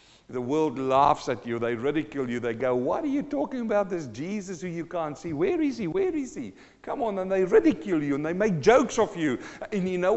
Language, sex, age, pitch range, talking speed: English, male, 50-69, 125-210 Hz, 250 wpm